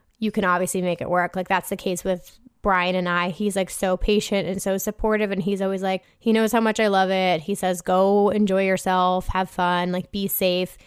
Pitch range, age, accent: 190-225 Hz, 20-39, American